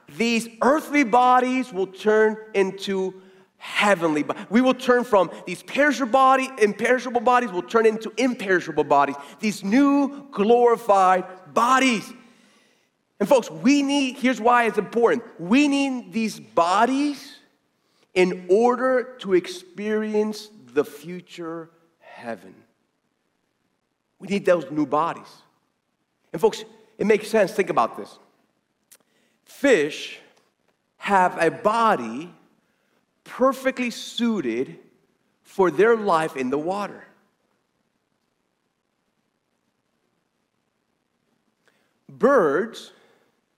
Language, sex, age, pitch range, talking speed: English, male, 40-59, 185-250 Hz, 100 wpm